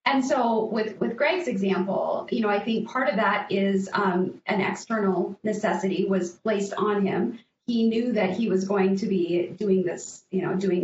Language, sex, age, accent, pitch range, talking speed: English, female, 30-49, American, 190-220 Hz, 195 wpm